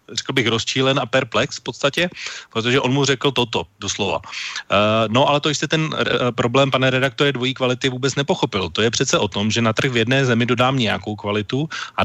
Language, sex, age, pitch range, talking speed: Slovak, male, 30-49, 115-140 Hz, 200 wpm